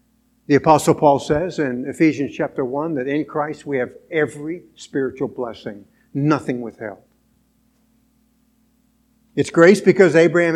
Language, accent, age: English, American, 60-79